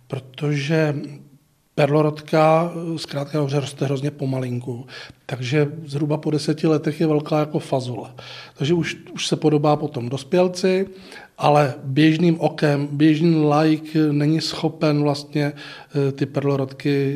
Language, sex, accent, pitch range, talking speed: Czech, male, native, 135-155 Hz, 115 wpm